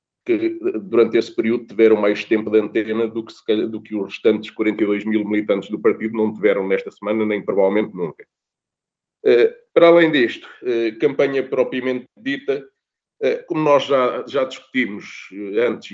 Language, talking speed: Portuguese, 150 wpm